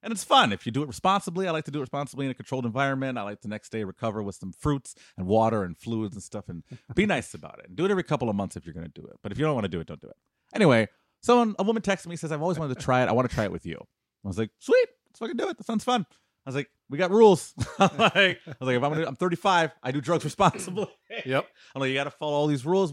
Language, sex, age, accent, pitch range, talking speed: English, male, 30-49, American, 95-160 Hz, 320 wpm